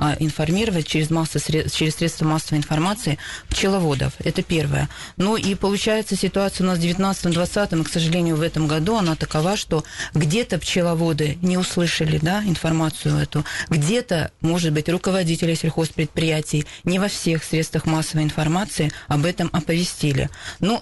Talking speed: 140 wpm